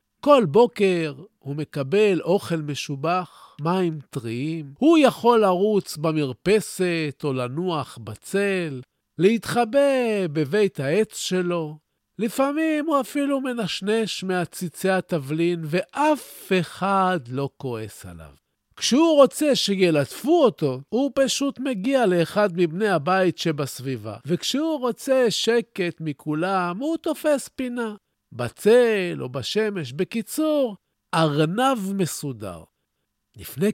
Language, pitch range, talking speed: Hebrew, 145-225 Hz, 100 wpm